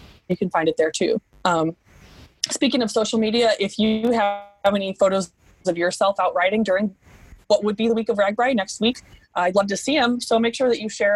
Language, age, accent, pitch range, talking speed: English, 20-39, American, 180-215 Hz, 220 wpm